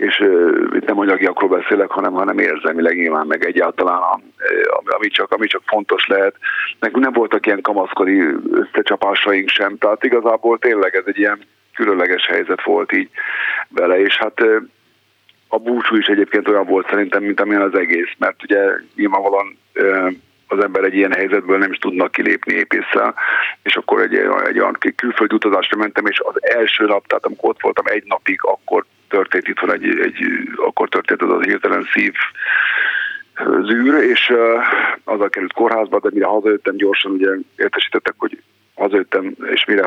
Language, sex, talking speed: Hungarian, male, 165 wpm